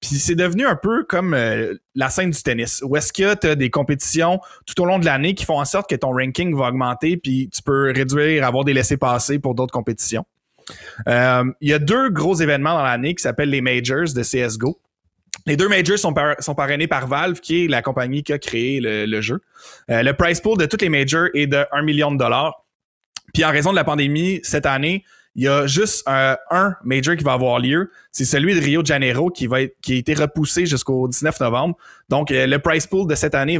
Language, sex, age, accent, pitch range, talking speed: French, male, 20-39, Canadian, 130-165 Hz, 230 wpm